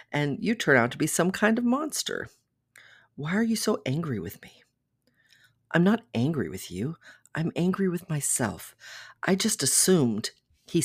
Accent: American